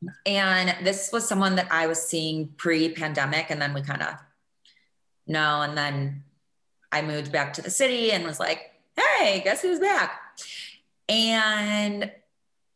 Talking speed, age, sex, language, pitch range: 145 wpm, 20-39, female, English, 160-215 Hz